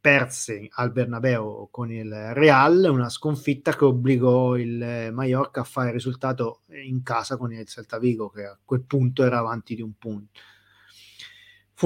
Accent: native